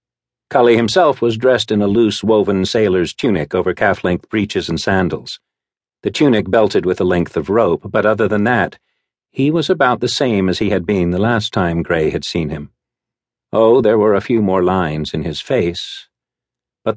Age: 50-69